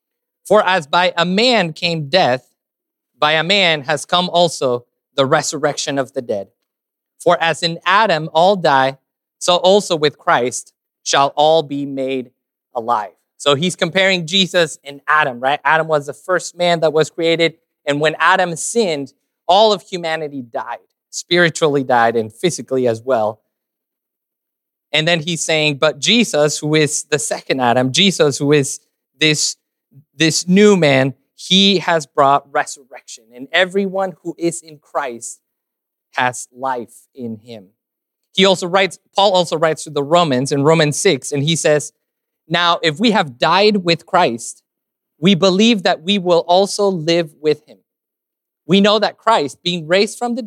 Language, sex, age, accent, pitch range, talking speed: English, male, 20-39, American, 140-180 Hz, 160 wpm